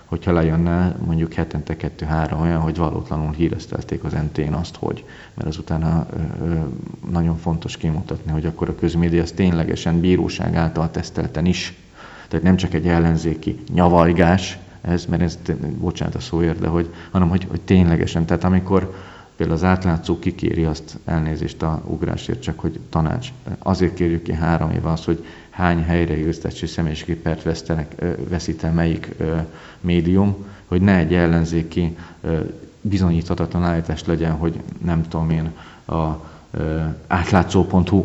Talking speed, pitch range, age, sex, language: 140 wpm, 80-90 Hz, 40-59, male, Hungarian